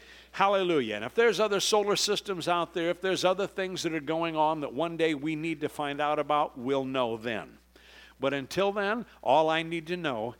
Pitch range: 120-175 Hz